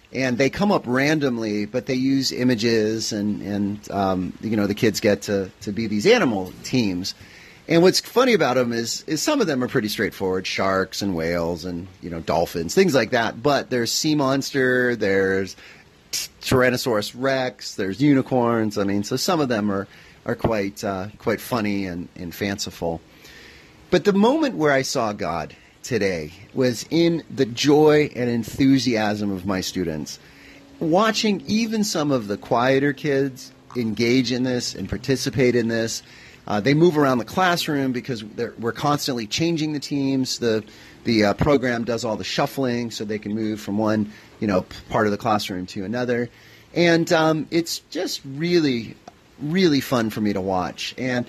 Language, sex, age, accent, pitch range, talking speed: English, male, 30-49, American, 105-135 Hz, 170 wpm